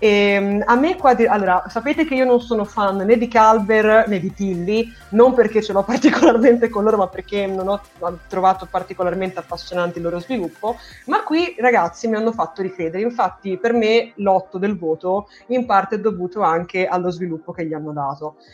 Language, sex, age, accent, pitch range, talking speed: Italian, female, 20-39, native, 180-225 Hz, 190 wpm